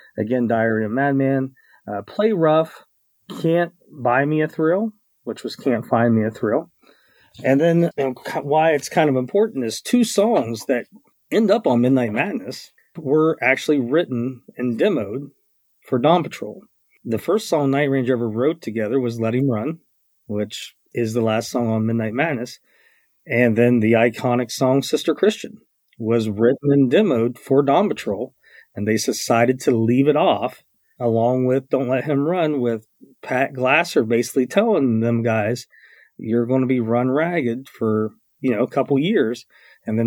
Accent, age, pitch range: American, 40-59, 115-140 Hz